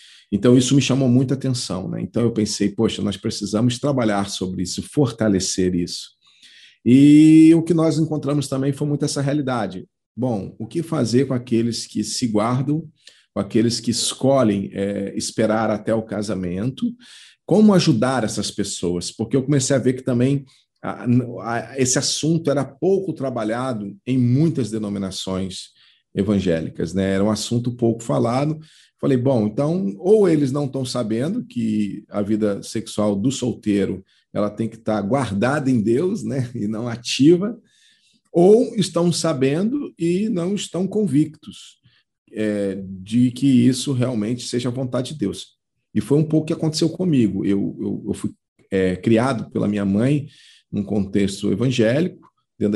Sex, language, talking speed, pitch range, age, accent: male, Portuguese, 150 wpm, 105-145 Hz, 40-59, Brazilian